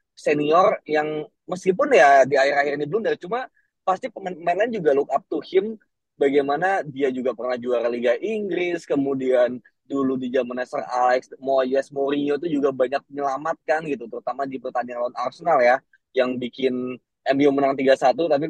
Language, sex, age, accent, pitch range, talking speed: Indonesian, male, 20-39, native, 130-185 Hz, 160 wpm